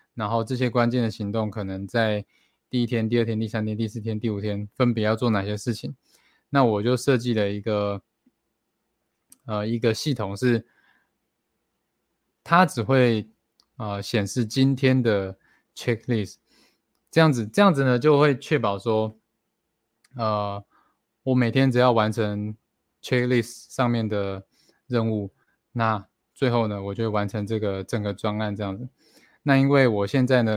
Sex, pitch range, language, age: male, 105-125 Hz, Chinese, 20-39